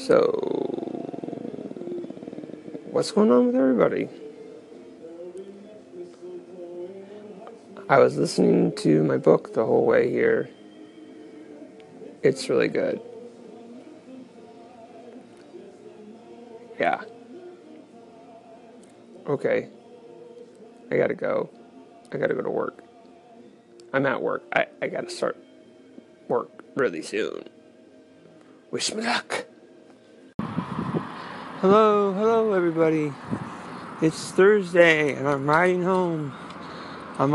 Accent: American